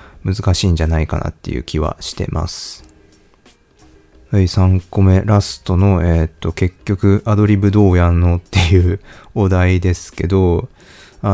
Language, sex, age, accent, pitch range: Japanese, male, 20-39, native, 85-110 Hz